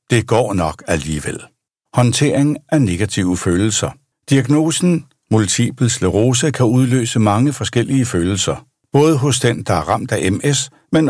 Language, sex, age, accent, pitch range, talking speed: Danish, male, 60-79, native, 105-140 Hz, 135 wpm